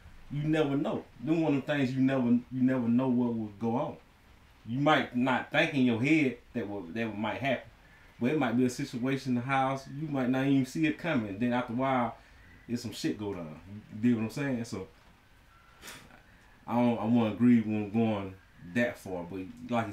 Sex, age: male, 30-49